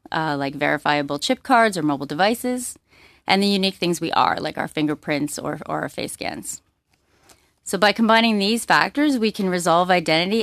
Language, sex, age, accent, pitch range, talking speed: English, female, 30-49, American, 155-200 Hz, 180 wpm